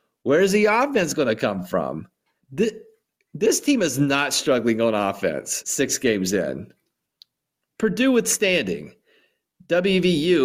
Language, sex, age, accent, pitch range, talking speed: English, male, 40-59, American, 135-195 Hz, 120 wpm